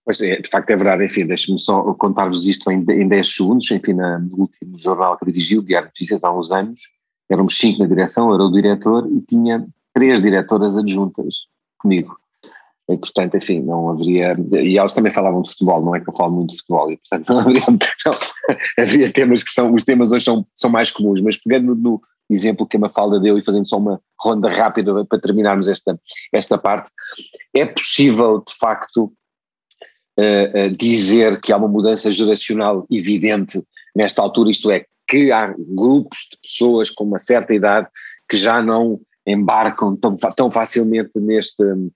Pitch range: 100-115 Hz